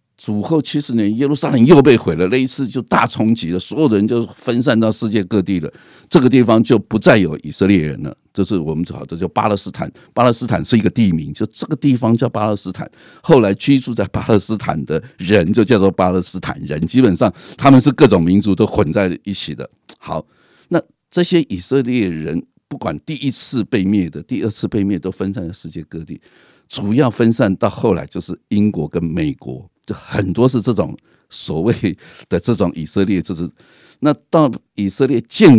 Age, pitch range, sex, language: 50-69, 90-125 Hz, male, Chinese